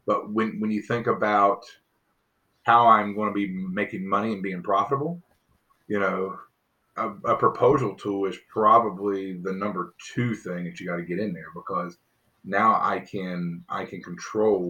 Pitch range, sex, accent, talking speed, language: 95-110 Hz, male, American, 170 wpm, English